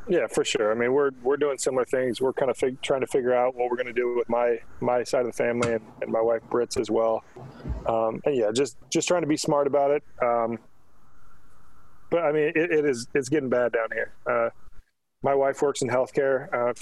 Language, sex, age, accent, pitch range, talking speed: English, male, 20-39, American, 120-140 Hz, 235 wpm